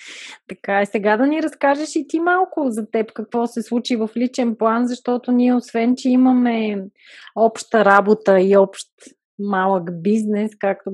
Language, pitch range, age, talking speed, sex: Bulgarian, 215-275 Hz, 20-39, 160 wpm, female